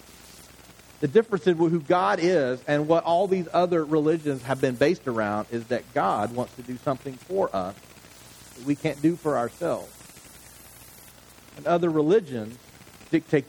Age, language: 40-59, English